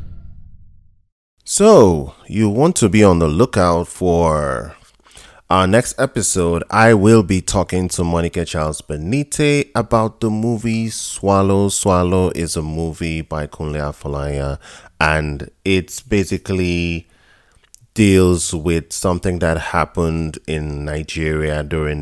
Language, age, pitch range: English, 20-39, 80-105 Hz